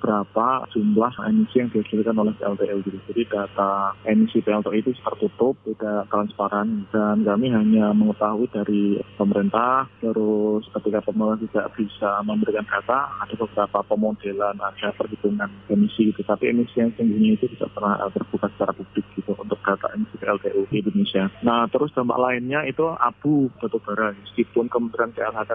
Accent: native